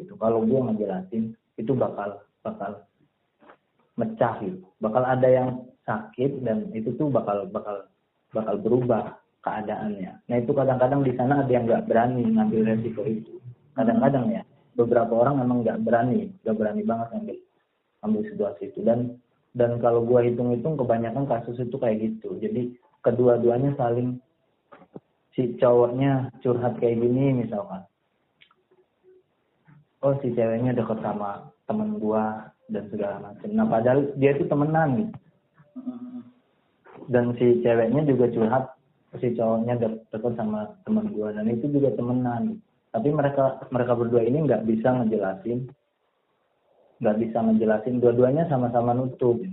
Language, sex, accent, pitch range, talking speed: Indonesian, male, native, 115-140 Hz, 135 wpm